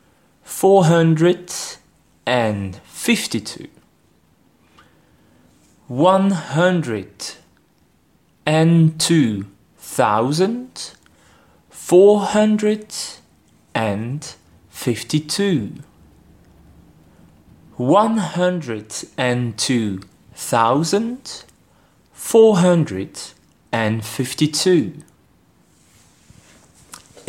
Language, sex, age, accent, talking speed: French, male, 30-49, French, 40 wpm